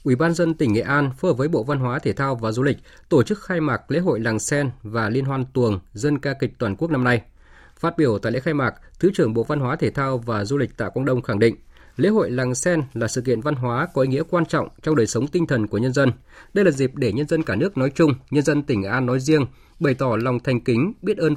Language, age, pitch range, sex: Vietnamese, 20-39, 115-155 Hz, male